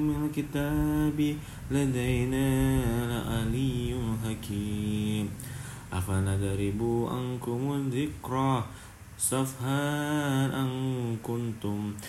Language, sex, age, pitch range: Indonesian, male, 20-39, 105-130 Hz